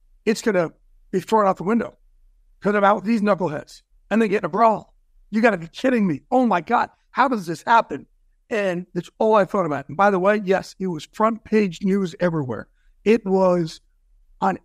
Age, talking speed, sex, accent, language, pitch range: 60-79, 215 wpm, male, American, English, 185-255 Hz